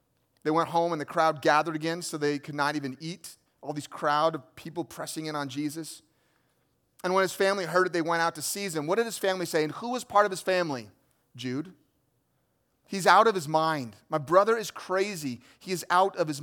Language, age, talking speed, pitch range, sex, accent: English, 30-49, 225 wpm, 150-185 Hz, male, American